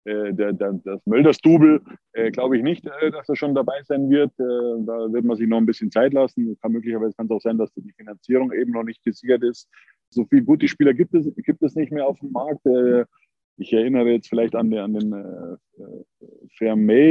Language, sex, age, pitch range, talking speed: German, male, 20-39, 110-145 Hz, 220 wpm